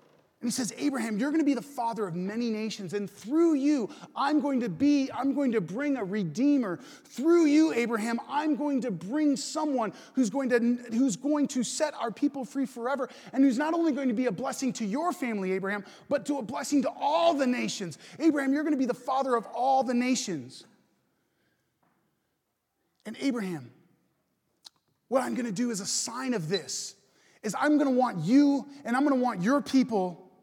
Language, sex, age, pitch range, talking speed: English, male, 30-49, 230-290 Hz, 185 wpm